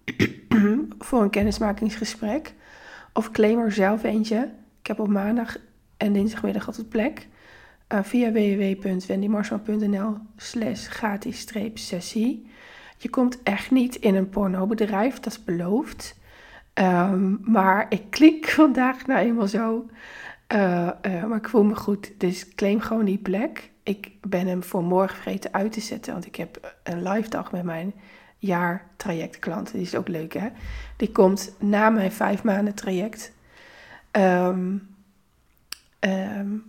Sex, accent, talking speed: female, Dutch, 135 wpm